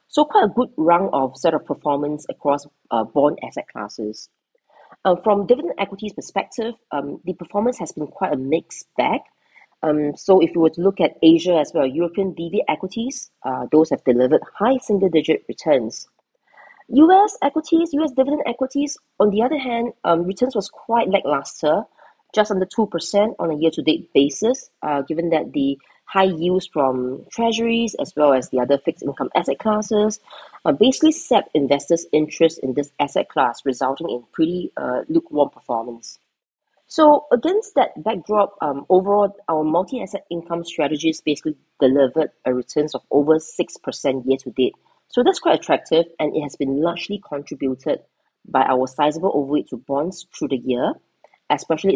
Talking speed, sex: 160 wpm, female